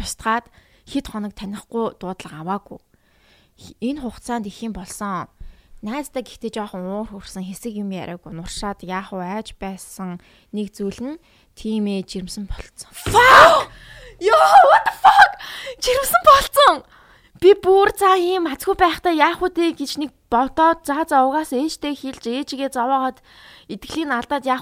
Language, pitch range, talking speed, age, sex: English, 205-270 Hz, 75 wpm, 20-39, female